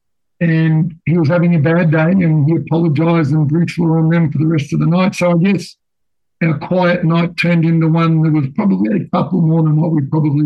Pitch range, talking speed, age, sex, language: 155-175 Hz, 225 wpm, 60-79, male, English